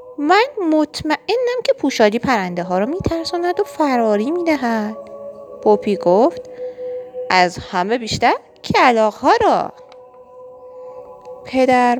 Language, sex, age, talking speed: Persian, female, 30-49, 105 wpm